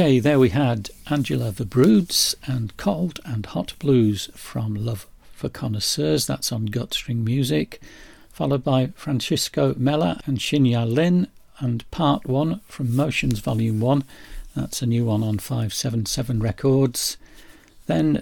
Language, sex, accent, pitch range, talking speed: English, male, British, 110-140 Hz, 140 wpm